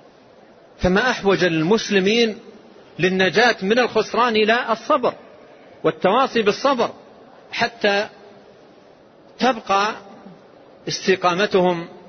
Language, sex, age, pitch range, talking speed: Arabic, male, 40-59, 185-225 Hz, 65 wpm